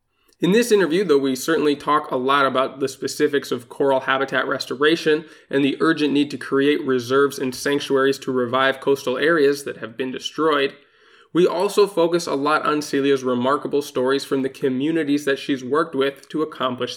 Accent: American